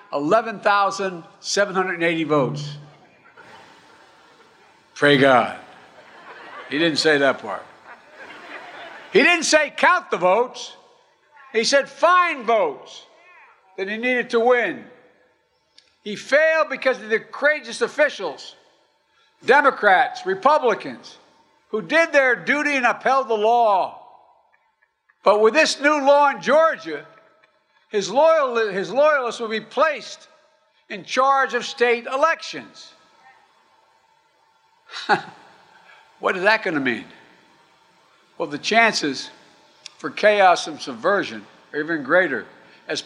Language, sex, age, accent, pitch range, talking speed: English, male, 60-79, American, 205-295 Hz, 105 wpm